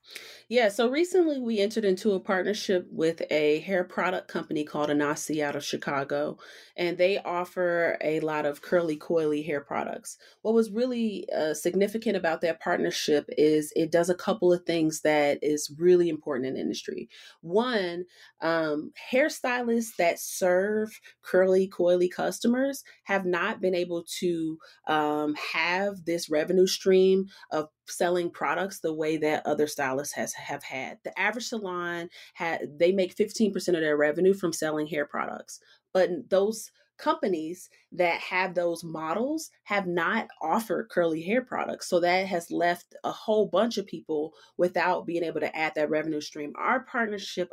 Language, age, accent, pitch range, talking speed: English, 30-49, American, 155-190 Hz, 155 wpm